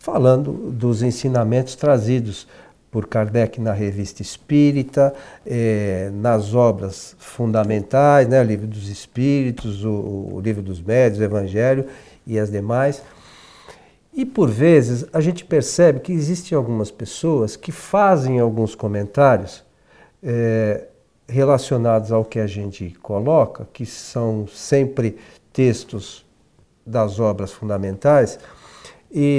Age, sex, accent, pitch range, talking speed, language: 50-69, male, Brazilian, 110-160 Hz, 110 wpm, Portuguese